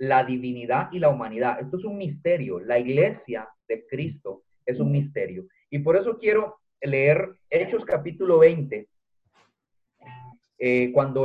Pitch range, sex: 125-165 Hz, male